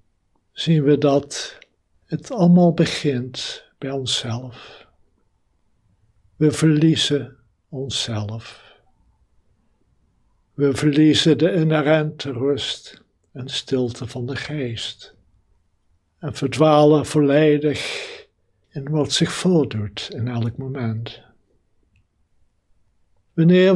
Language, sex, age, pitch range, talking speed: Dutch, male, 60-79, 115-155 Hz, 80 wpm